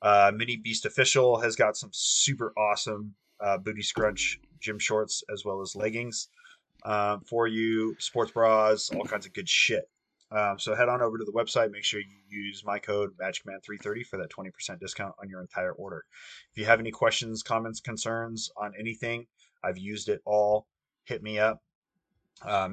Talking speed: 180 wpm